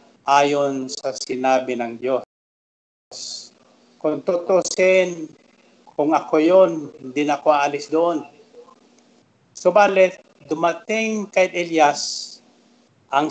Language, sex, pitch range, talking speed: Filipino, male, 150-170 Hz, 90 wpm